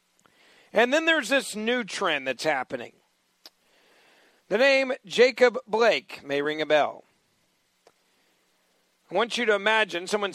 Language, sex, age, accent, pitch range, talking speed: English, male, 50-69, American, 145-215 Hz, 130 wpm